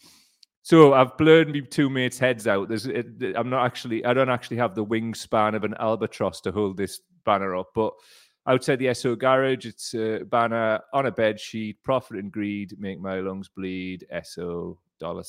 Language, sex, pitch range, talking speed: English, male, 110-165 Hz, 185 wpm